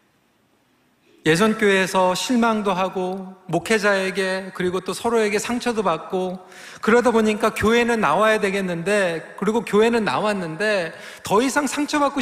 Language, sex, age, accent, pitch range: Korean, male, 40-59, native, 190-245 Hz